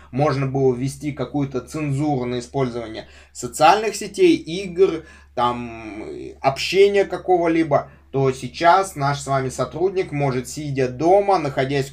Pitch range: 130-170 Hz